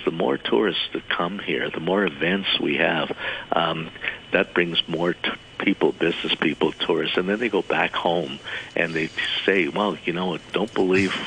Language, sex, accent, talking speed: English, male, American, 185 wpm